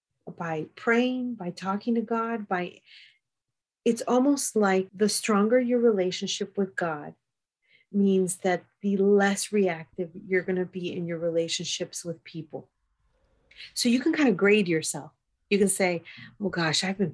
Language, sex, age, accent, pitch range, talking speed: English, female, 40-59, American, 175-220 Hz, 155 wpm